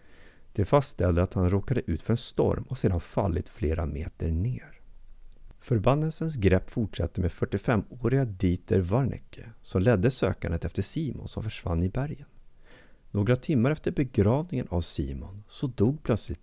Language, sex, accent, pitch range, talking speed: Swedish, male, native, 90-125 Hz, 145 wpm